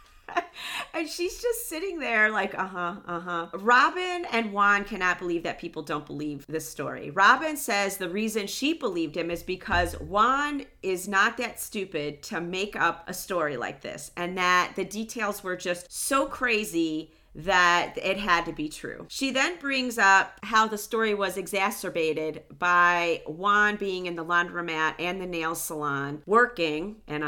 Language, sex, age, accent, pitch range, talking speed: English, female, 40-59, American, 165-210 Hz, 165 wpm